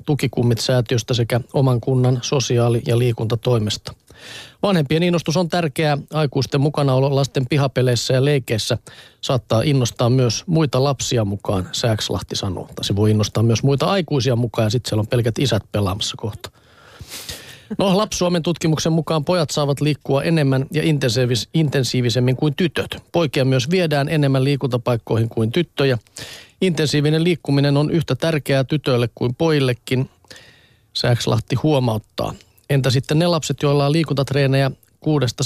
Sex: male